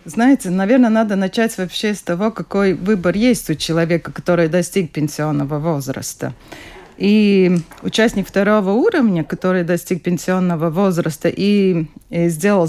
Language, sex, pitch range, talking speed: Russian, female, 165-240 Hz, 125 wpm